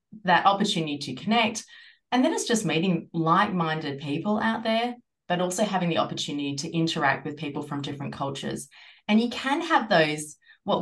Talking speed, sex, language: 170 wpm, female, English